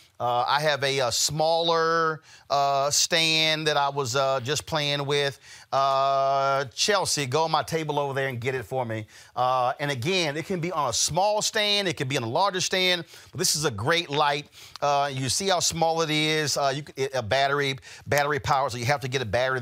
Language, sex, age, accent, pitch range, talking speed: English, male, 40-59, American, 125-165 Hz, 225 wpm